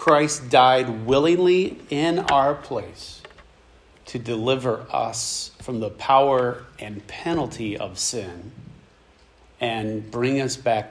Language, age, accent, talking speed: English, 40-59, American, 110 wpm